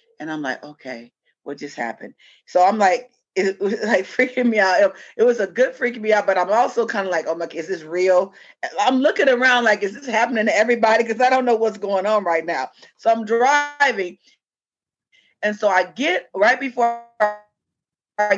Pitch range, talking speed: 170-245 Hz, 205 wpm